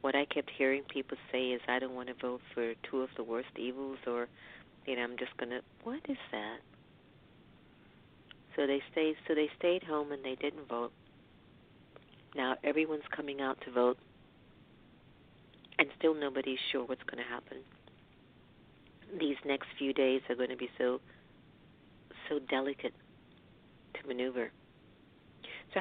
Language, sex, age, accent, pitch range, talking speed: English, female, 50-69, American, 125-150 Hz, 155 wpm